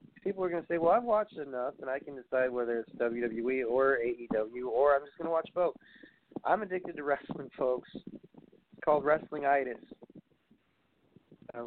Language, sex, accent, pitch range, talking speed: English, male, American, 120-160 Hz, 180 wpm